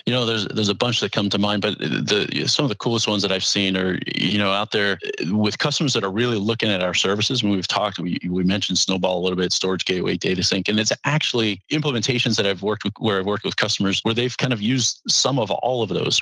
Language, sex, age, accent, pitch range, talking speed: English, male, 40-59, American, 95-110 Hz, 260 wpm